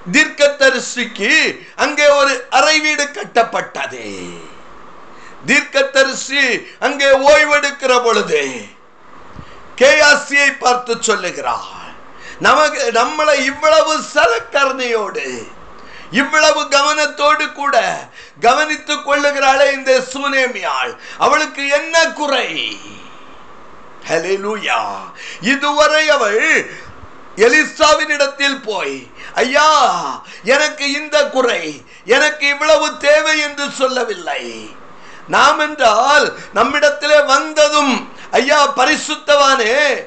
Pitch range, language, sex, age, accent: 260-300 Hz, Tamil, male, 50-69, native